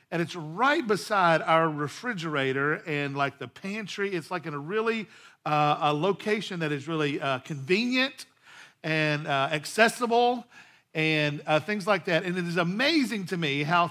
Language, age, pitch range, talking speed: English, 50-69, 155-210 Hz, 165 wpm